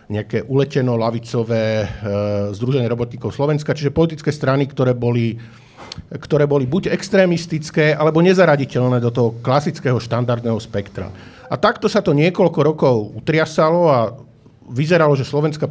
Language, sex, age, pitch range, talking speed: Slovak, male, 50-69, 120-150 Hz, 130 wpm